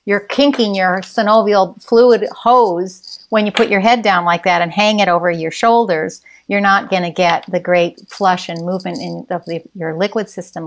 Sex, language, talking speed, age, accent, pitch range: female, English, 185 wpm, 50-69, American, 180-225 Hz